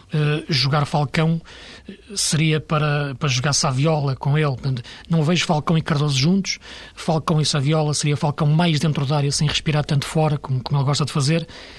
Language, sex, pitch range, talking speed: Portuguese, male, 140-160 Hz, 175 wpm